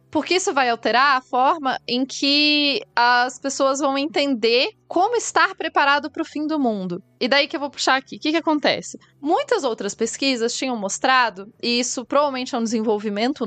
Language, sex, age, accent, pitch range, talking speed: Portuguese, female, 20-39, Brazilian, 240-320 Hz, 185 wpm